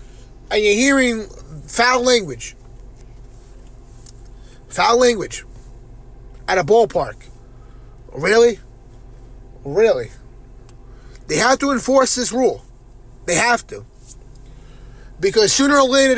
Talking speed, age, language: 95 wpm, 30-49, English